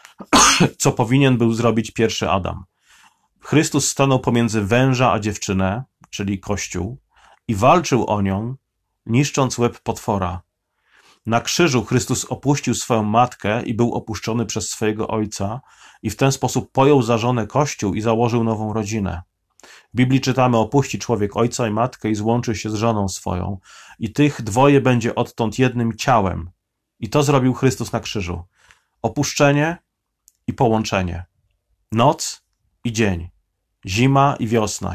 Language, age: Polish, 30-49